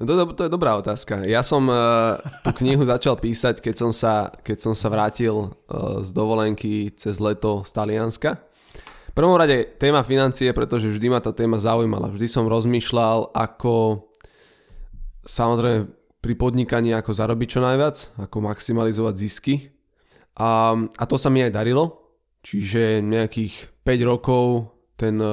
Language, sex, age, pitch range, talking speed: Slovak, male, 20-39, 110-125 Hz, 140 wpm